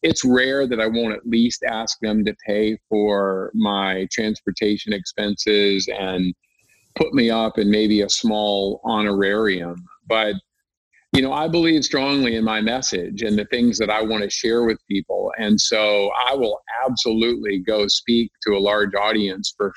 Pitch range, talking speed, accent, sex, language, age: 100-125 Hz, 165 wpm, American, male, English, 50-69